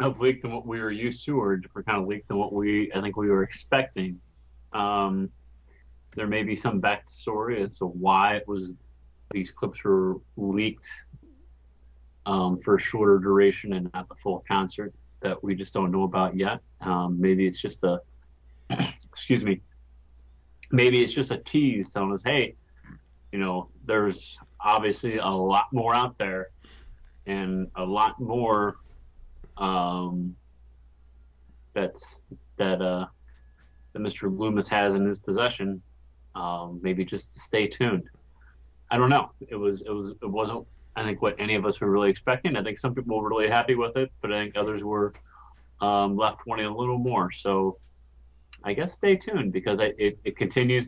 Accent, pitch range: American, 65-105 Hz